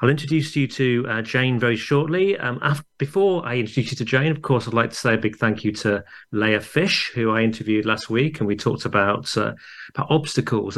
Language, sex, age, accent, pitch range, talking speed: English, male, 40-59, British, 110-140 Hz, 230 wpm